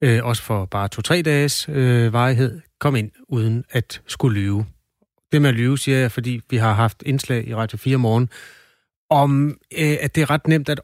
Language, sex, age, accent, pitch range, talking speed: Danish, male, 30-49, native, 110-140 Hz, 205 wpm